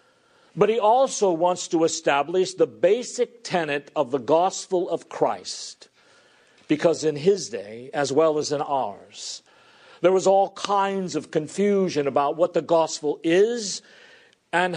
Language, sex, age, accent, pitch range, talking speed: English, male, 50-69, American, 140-185 Hz, 140 wpm